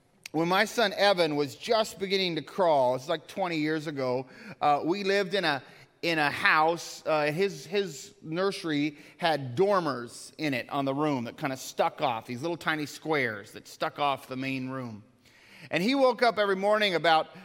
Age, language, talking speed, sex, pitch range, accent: 30-49, English, 190 wpm, male, 155-210 Hz, American